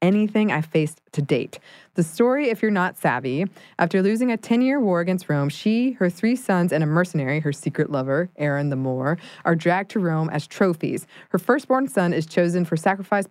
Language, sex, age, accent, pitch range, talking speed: English, female, 20-39, American, 155-205 Hz, 205 wpm